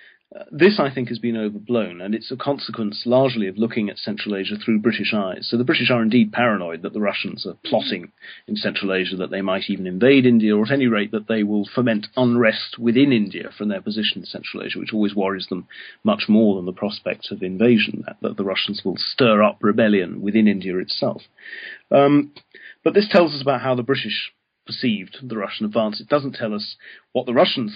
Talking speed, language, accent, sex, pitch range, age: 210 wpm, English, British, male, 105-125 Hz, 40-59